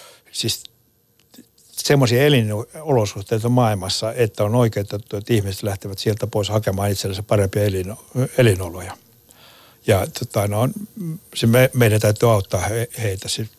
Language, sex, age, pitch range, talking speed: Finnish, male, 60-79, 105-125 Hz, 120 wpm